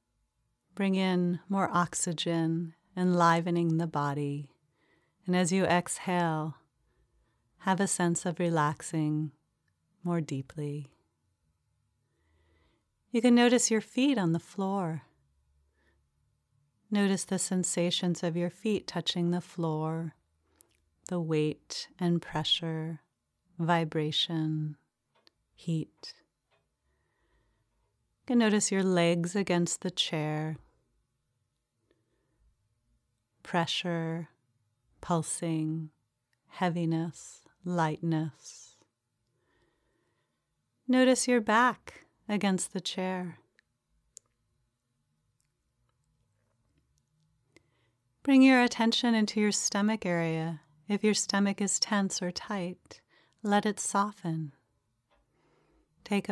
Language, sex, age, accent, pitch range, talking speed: English, female, 30-49, American, 135-185 Hz, 80 wpm